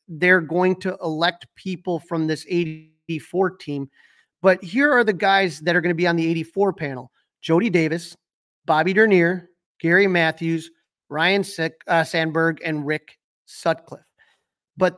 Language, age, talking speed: English, 30-49, 150 wpm